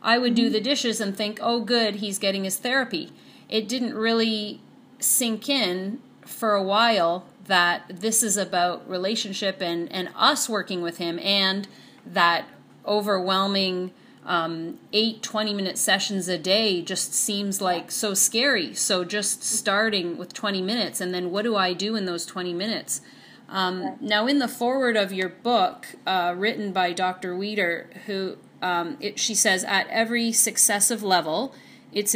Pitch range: 185-220 Hz